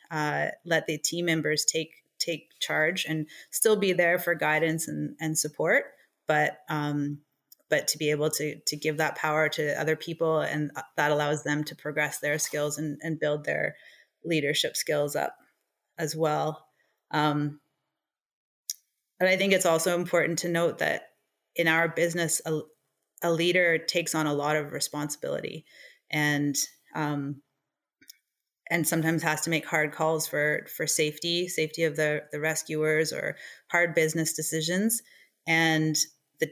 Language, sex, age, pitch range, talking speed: English, female, 30-49, 150-165 Hz, 155 wpm